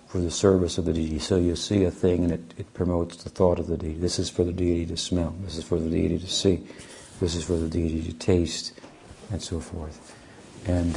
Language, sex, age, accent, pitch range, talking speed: English, male, 60-79, American, 85-95 Hz, 245 wpm